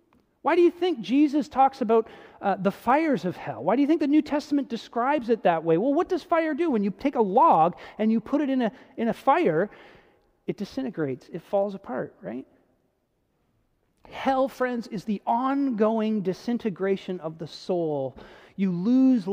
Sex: male